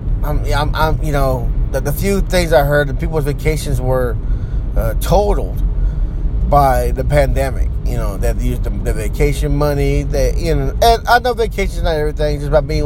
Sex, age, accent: male, 20-39, American